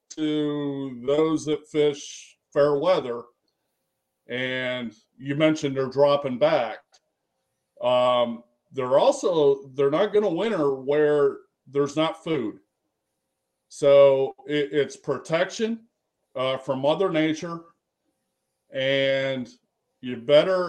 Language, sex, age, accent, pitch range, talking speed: English, male, 40-59, American, 135-155 Hz, 100 wpm